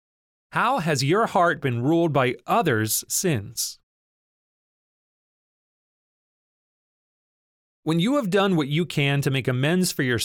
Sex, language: male, English